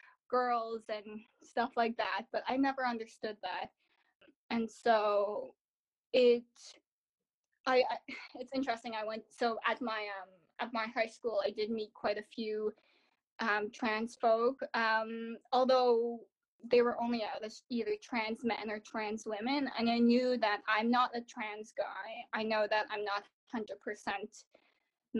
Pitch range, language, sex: 215-245 Hz, English, female